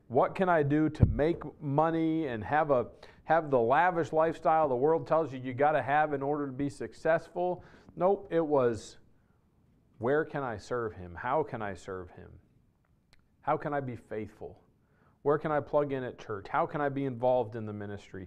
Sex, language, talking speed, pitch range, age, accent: male, English, 195 wpm, 120-155 Hz, 40-59, American